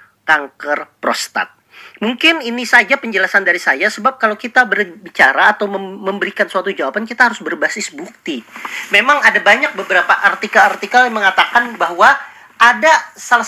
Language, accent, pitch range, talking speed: Indonesian, native, 190-240 Hz, 135 wpm